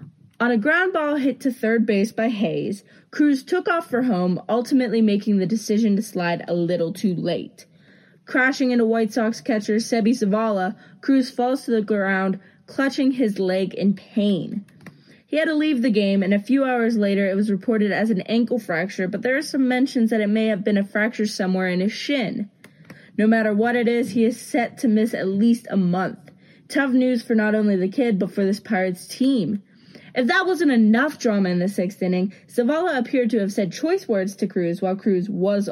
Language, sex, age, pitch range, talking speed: English, female, 20-39, 190-245 Hz, 205 wpm